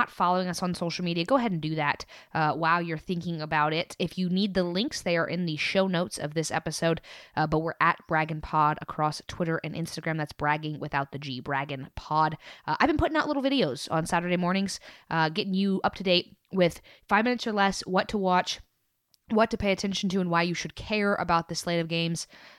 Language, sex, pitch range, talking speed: English, female, 160-210 Hz, 230 wpm